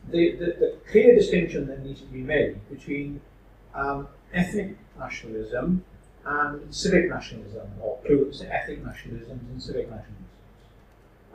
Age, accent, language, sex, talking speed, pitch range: 50-69, British, English, male, 130 wpm, 130-180 Hz